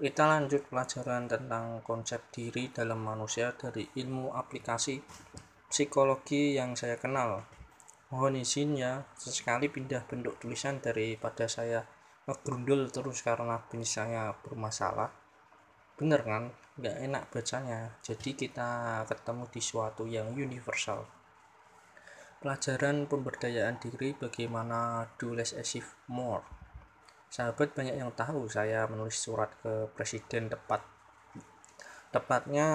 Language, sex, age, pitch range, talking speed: Indonesian, male, 20-39, 115-135 Hz, 110 wpm